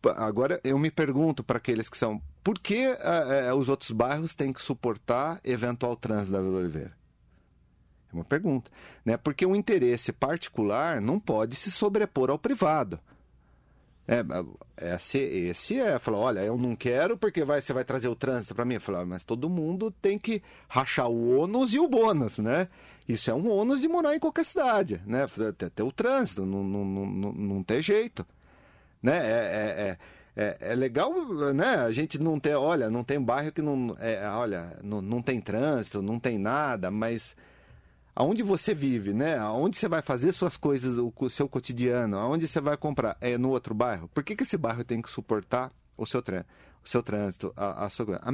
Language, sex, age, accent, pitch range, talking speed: Portuguese, male, 40-59, Brazilian, 115-160 Hz, 190 wpm